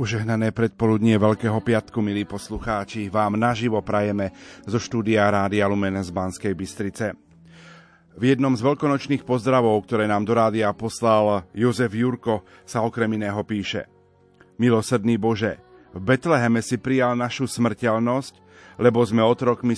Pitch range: 110-130 Hz